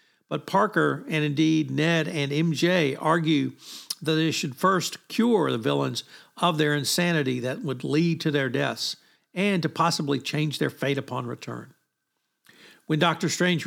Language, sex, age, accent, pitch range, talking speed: English, male, 60-79, American, 145-170 Hz, 155 wpm